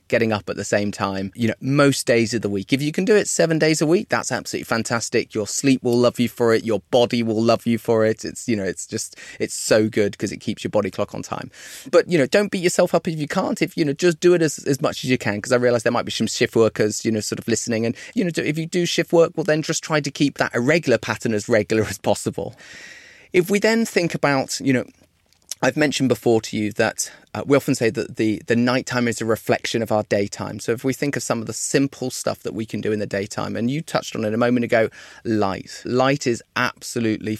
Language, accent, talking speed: English, British, 270 wpm